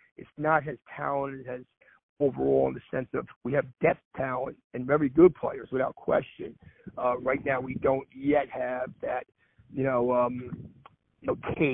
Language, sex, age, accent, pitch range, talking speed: English, male, 40-59, American, 125-140 Hz, 170 wpm